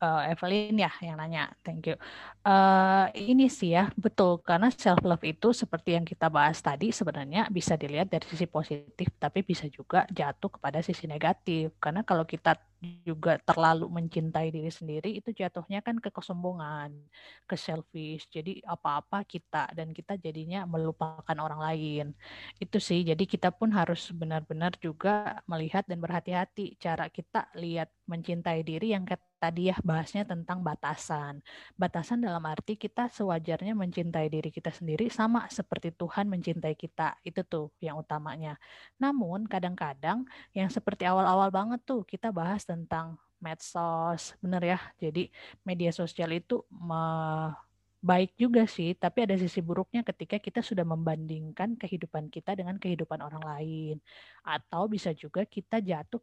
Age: 20-39